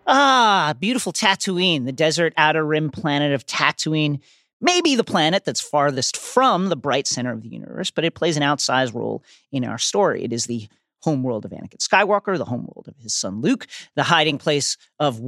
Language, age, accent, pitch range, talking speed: English, 40-59, American, 145-195 Hz, 190 wpm